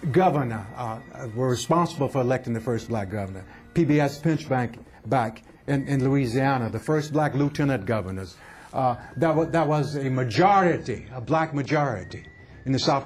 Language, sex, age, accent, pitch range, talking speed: English, male, 60-79, American, 120-150 Hz, 160 wpm